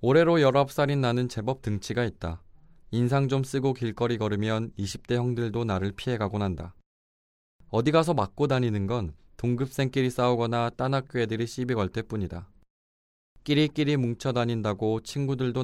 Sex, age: male, 20-39